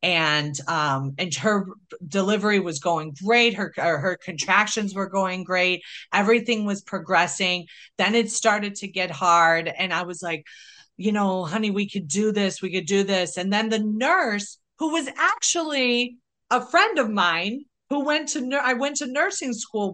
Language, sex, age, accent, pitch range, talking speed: English, female, 40-59, American, 185-245 Hz, 170 wpm